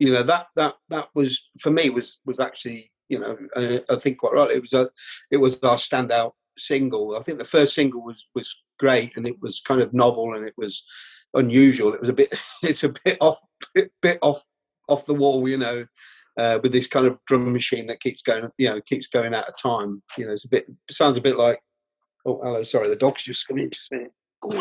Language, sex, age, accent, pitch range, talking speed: English, male, 40-59, British, 120-155 Hz, 240 wpm